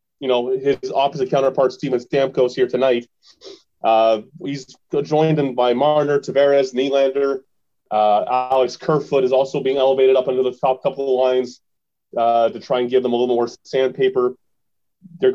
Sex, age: male, 30-49